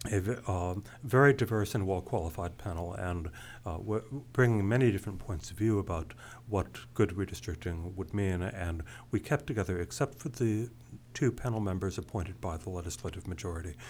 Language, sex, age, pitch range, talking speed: English, male, 60-79, 95-120 Hz, 155 wpm